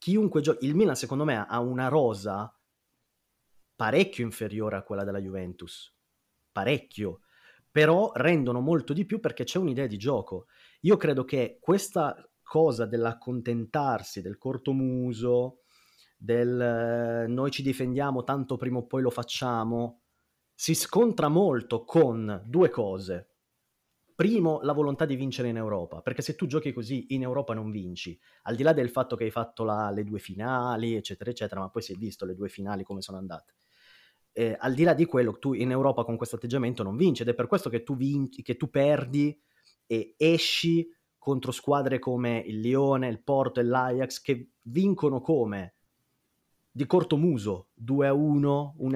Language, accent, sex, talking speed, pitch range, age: Italian, native, male, 165 wpm, 115-140 Hz, 30-49